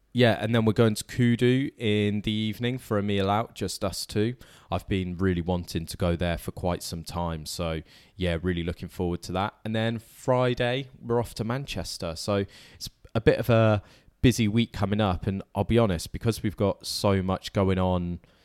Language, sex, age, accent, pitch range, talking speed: English, male, 20-39, British, 95-115 Hz, 205 wpm